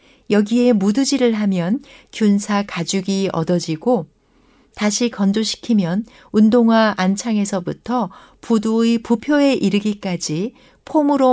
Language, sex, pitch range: Korean, female, 195-255 Hz